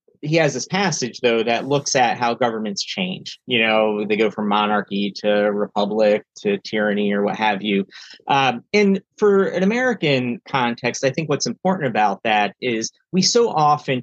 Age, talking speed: 30-49, 175 wpm